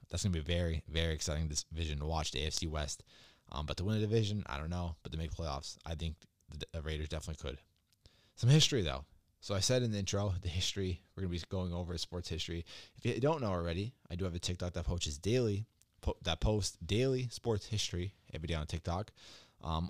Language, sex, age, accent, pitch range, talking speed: English, male, 20-39, American, 85-105 Hz, 225 wpm